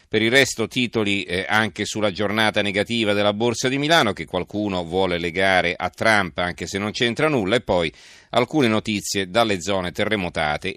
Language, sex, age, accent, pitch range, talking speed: Italian, male, 40-59, native, 90-110 Hz, 165 wpm